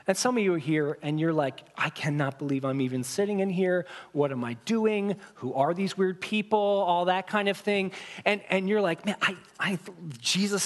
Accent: American